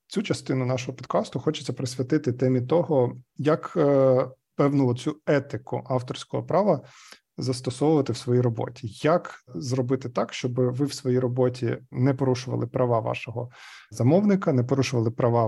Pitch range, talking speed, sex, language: 125-150 Hz, 130 wpm, male, Ukrainian